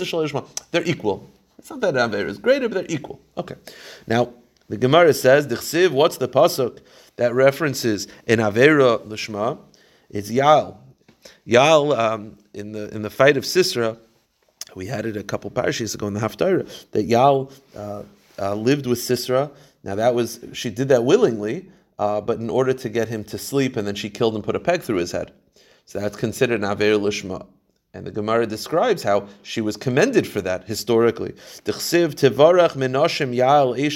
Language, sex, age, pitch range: English, male, 30-49, 110-150 Hz